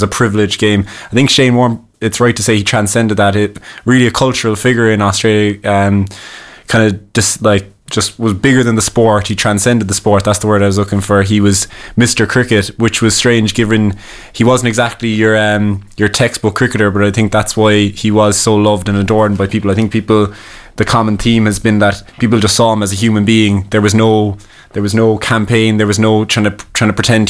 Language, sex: English, male